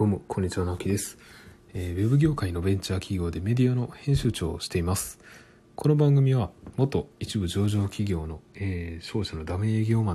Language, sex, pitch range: Japanese, male, 85-110 Hz